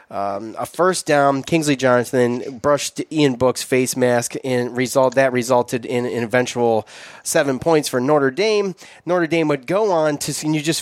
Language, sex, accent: English, male, American